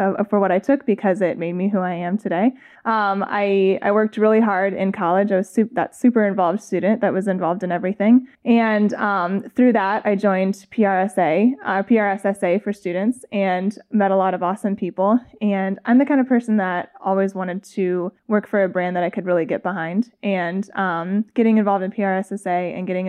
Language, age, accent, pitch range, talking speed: English, 20-39, American, 185-215 Hz, 205 wpm